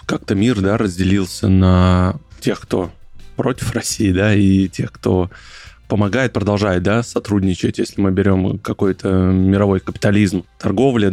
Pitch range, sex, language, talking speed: 95-115 Hz, male, Russian, 130 wpm